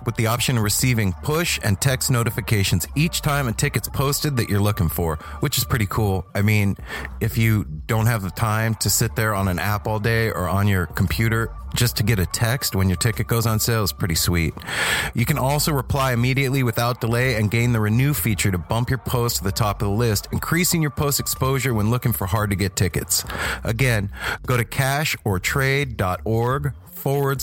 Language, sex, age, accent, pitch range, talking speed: English, male, 30-49, American, 95-120 Hz, 200 wpm